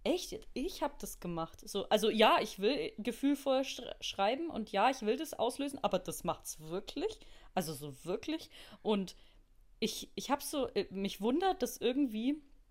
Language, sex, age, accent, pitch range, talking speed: German, female, 30-49, German, 215-275 Hz, 160 wpm